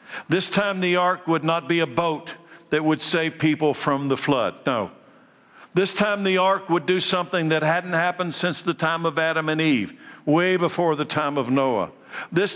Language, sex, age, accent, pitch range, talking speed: English, male, 60-79, American, 150-185 Hz, 195 wpm